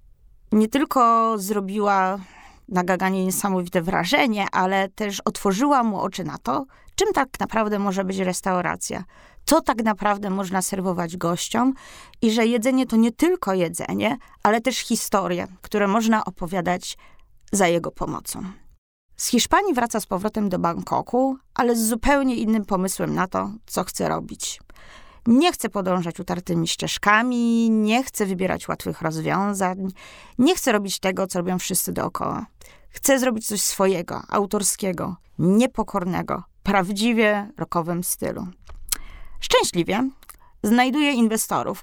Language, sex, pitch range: Polish, female, 185-230 Hz